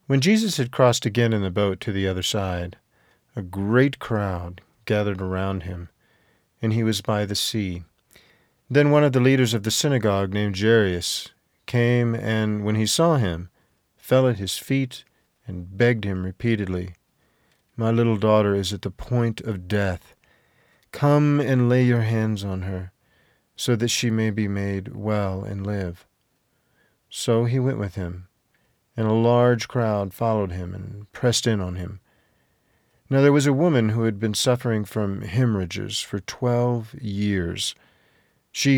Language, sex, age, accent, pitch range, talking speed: English, male, 50-69, American, 100-120 Hz, 160 wpm